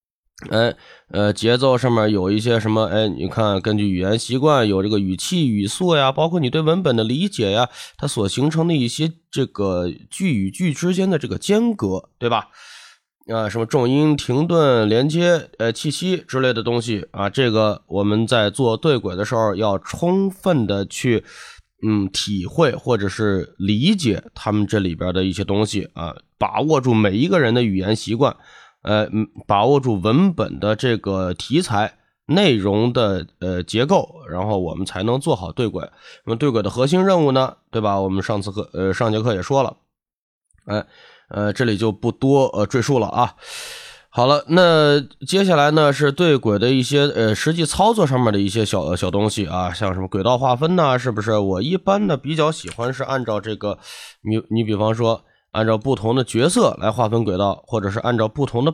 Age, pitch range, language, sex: 20-39, 100-140 Hz, Chinese, male